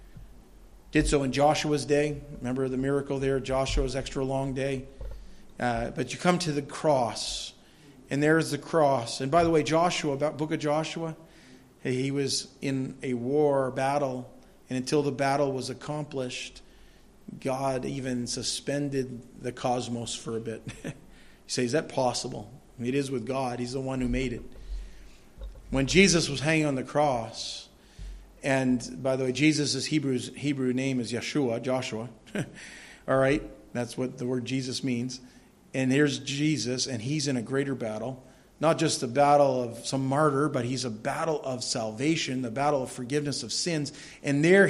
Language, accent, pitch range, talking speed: English, American, 125-150 Hz, 170 wpm